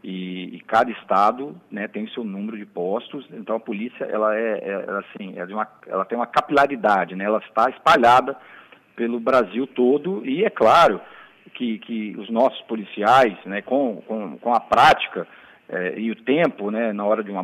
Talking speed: 190 wpm